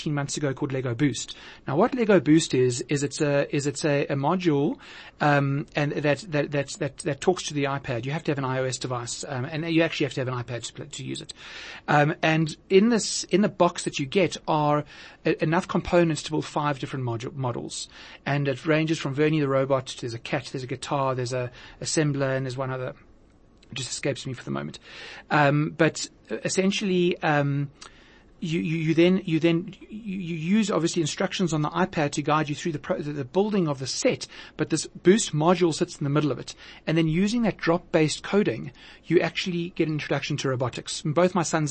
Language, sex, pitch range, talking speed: English, male, 140-170 Hz, 220 wpm